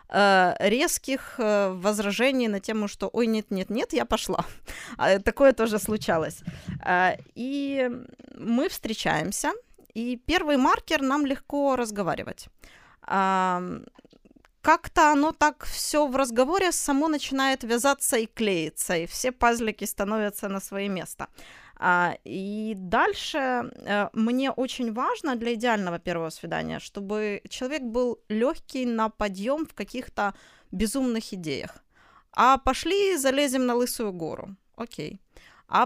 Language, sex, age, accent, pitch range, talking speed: Russian, female, 20-39, native, 200-275 Hz, 110 wpm